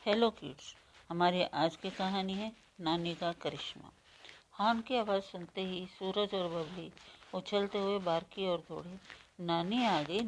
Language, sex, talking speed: Hindi, female, 150 wpm